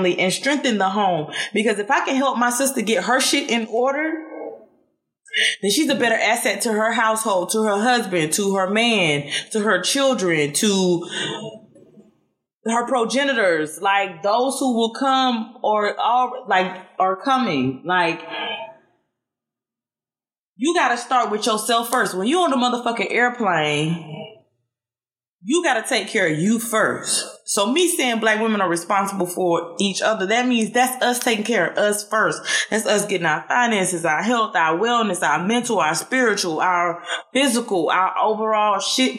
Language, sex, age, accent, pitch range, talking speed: English, female, 20-39, American, 190-255 Hz, 160 wpm